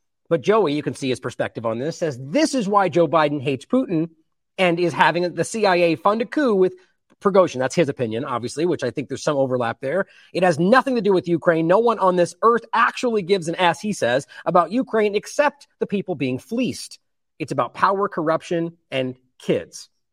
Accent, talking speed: American, 205 wpm